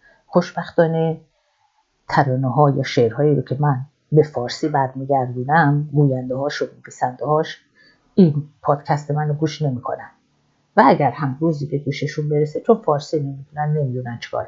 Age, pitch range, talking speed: 50-69, 135-175 Hz, 130 wpm